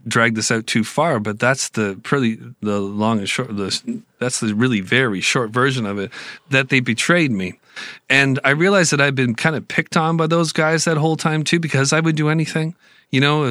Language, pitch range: English, 105-130 Hz